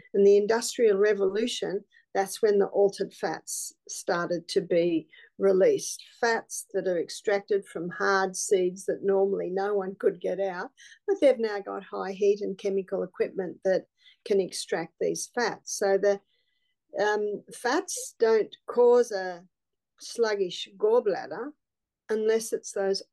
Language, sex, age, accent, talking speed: English, female, 50-69, Australian, 140 wpm